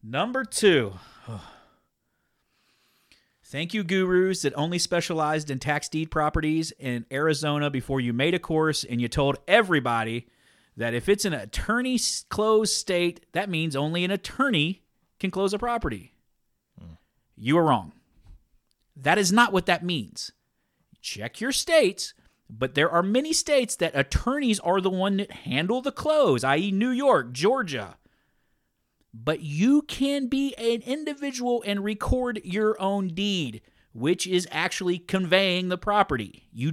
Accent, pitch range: American, 150-210 Hz